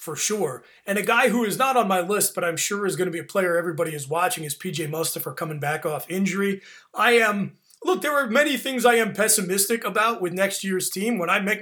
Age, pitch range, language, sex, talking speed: 30-49, 180-225 Hz, English, male, 250 wpm